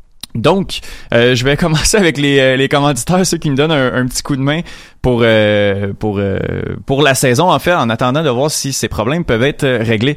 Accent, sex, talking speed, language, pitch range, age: Canadian, male, 225 wpm, French, 120-155 Hz, 20-39